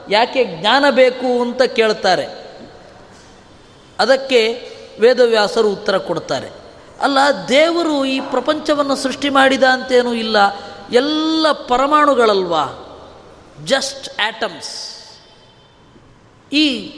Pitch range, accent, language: 225-290 Hz, native, Kannada